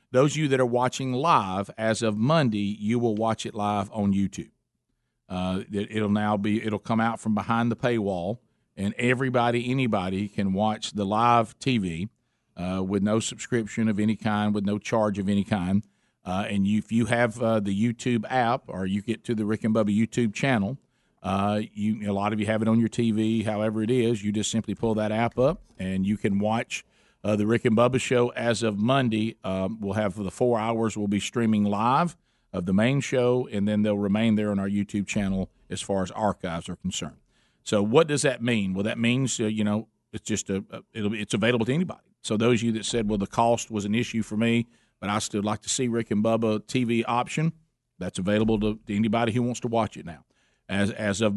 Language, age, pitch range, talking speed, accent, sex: English, 50-69, 105-120 Hz, 225 wpm, American, male